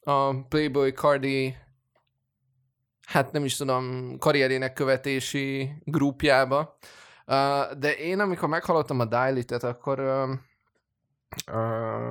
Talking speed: 95 wpm